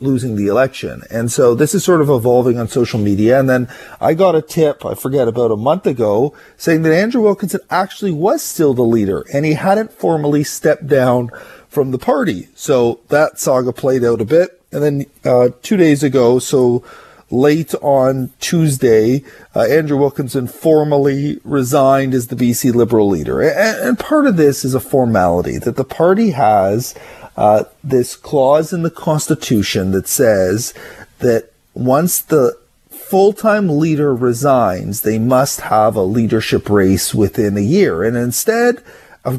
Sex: male